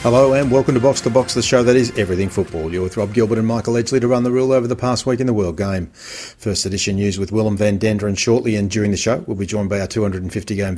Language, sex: English, male